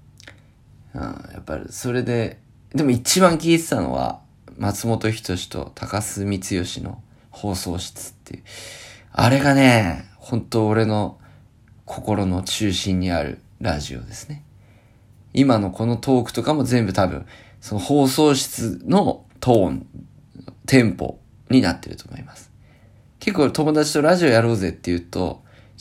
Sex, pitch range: male, 100-135 Hz